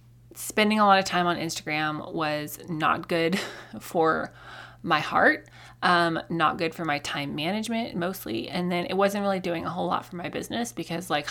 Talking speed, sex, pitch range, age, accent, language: 185 wpm, female, 160-205 Hz, 20-39, American, English